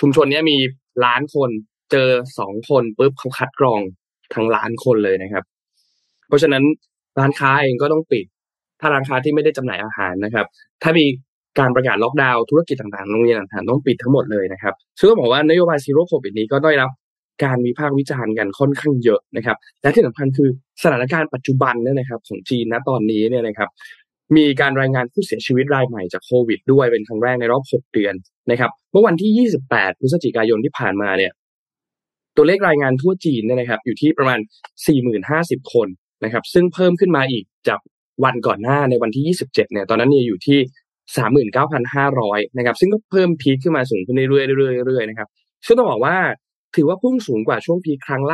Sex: male